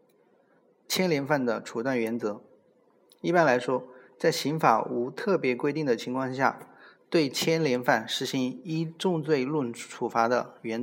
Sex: male